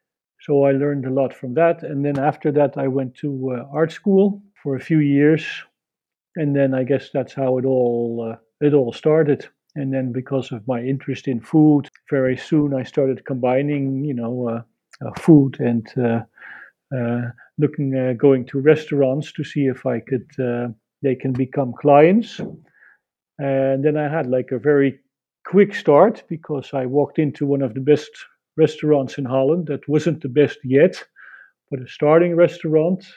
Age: 50-69